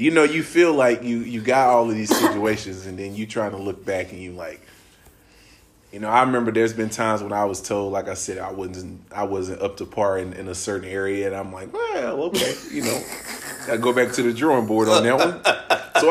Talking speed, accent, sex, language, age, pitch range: 245 wpm, American, male, English, 20-39, 105-170 Hz